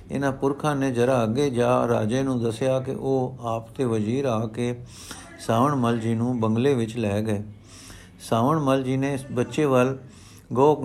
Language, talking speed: Punjabi, 175 wpm